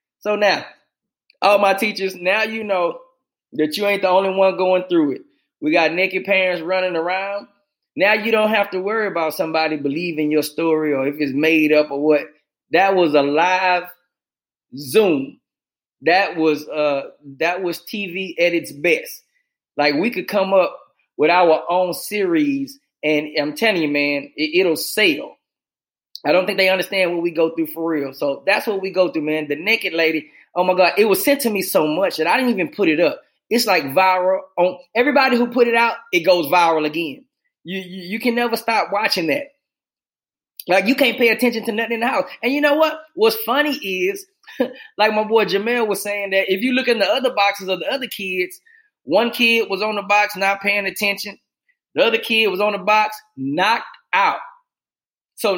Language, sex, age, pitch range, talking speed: English, male, 20-39, 175-250 Hz, 200 wpm